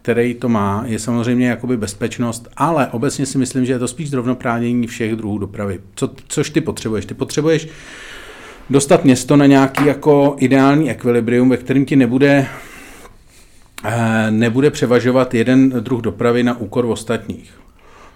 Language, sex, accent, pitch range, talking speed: Czech, male, native, 110-130 Hz, 150 wpm